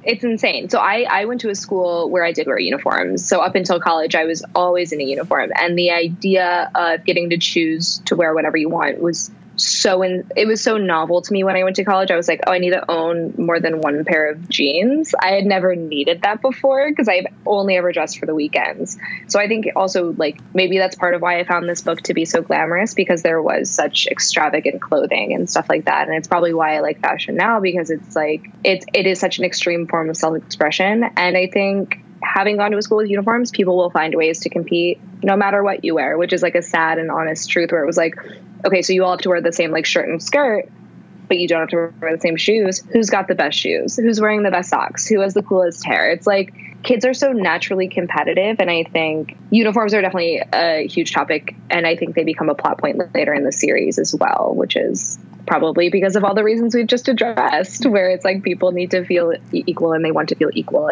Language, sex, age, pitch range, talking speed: English, female, 10-29, 170-200 Hz, 245 wpm